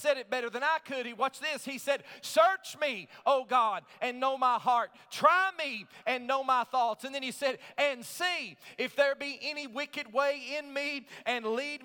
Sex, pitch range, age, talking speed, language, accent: male, 275-315 Hz, 40-59, 210 wpm, English, American